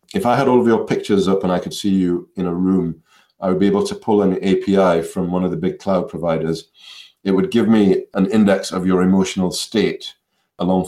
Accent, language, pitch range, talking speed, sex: British, English, 85-100 Hz, 230 wpm, male